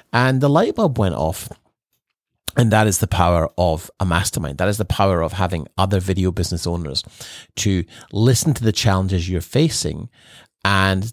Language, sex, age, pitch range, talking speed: English, male, 40-59, 90-120 Hz, 175 wpm